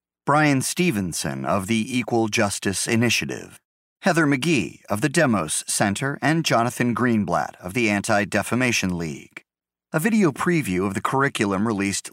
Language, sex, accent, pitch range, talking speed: English, male, American, 95-125 Hz, 135 wpm